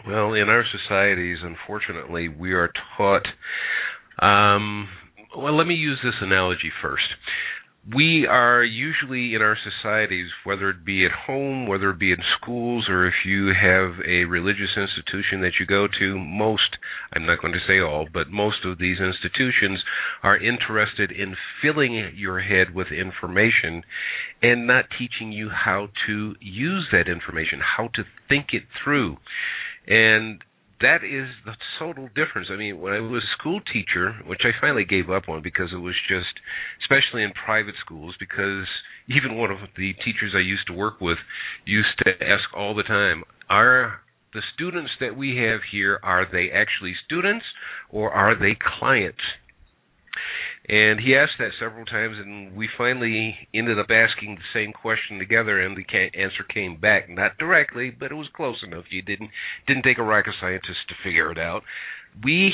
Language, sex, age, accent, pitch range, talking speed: English, male, 50-69, American, 95-120 Hz, 170 wpm